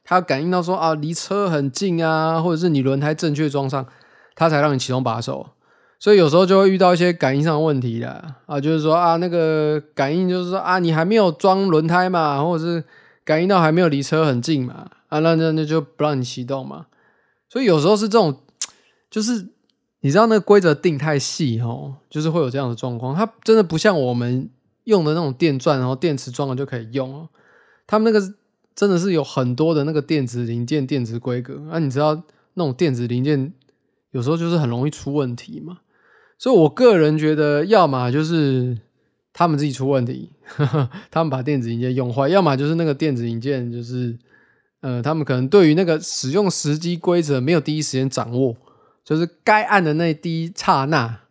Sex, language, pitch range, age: male, Chinese, 135-175 Hz, 20-39